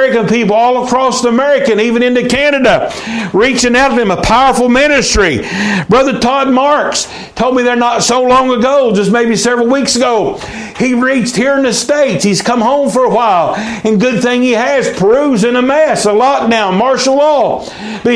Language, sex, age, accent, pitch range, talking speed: English, male, 60-79, American, 225-265 Hz, 190 wpm